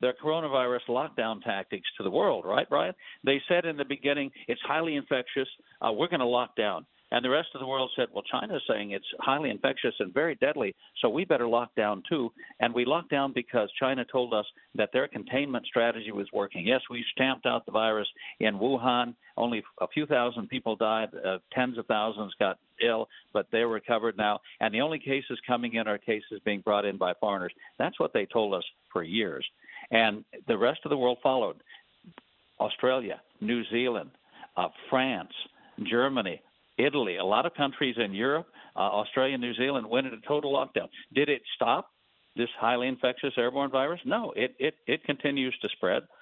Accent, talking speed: American, 190 wpm